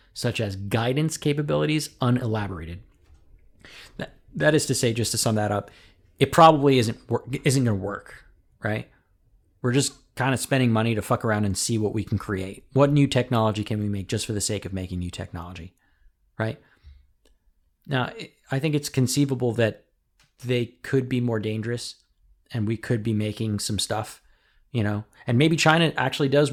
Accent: American